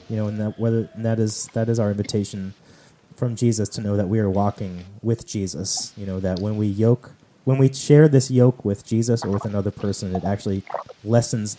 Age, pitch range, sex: 30-49, 110-140 Hz, male